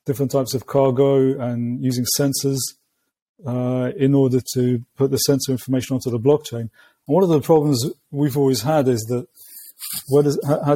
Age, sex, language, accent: 30-49, male, English, British